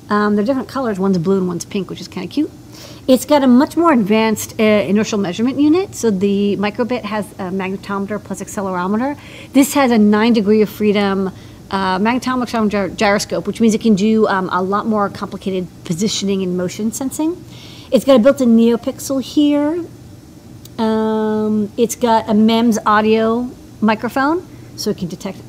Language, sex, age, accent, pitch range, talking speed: English, female, 40-59, American, 195-245 Hz, 170 wpm